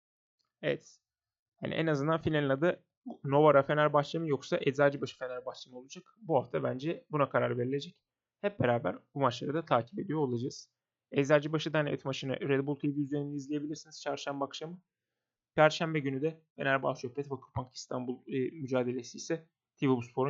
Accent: native